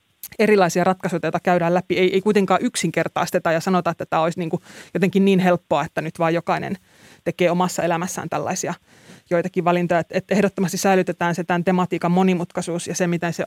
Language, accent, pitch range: Finnish, native, 170-190 Hz